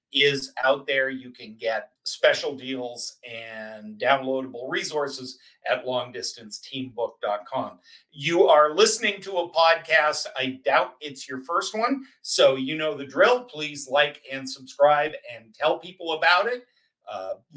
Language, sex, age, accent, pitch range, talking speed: English, male, 50-69, American, 135-175 Hz, 135 wpm